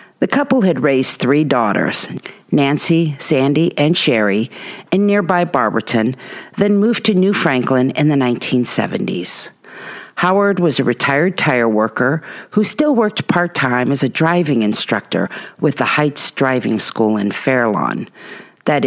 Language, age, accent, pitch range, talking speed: English, 50-69, American, 125-170 Hz, 140 wpm